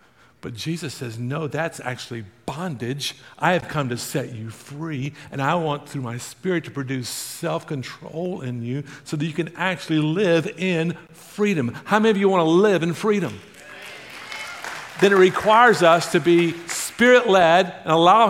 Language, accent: English, American